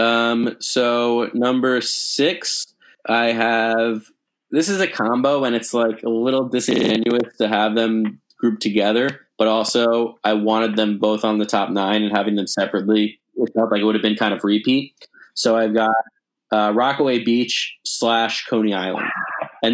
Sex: male